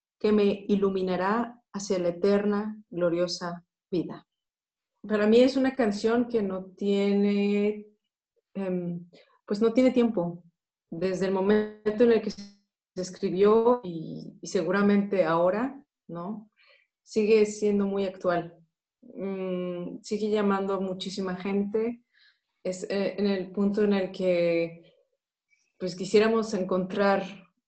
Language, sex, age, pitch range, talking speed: Polish, female, 30-49, 180-215 Hz, 110 wpm